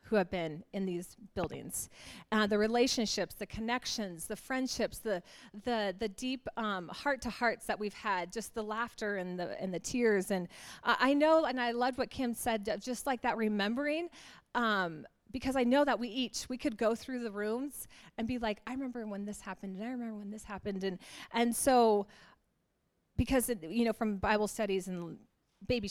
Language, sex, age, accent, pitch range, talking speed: English, female, 40-59, American, 195-240 Hz, 195 wpm